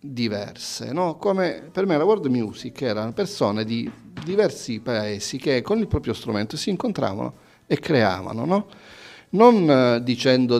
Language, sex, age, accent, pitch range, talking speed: Italian, male, 40-59, native, 115-160 Hz, 140 wpm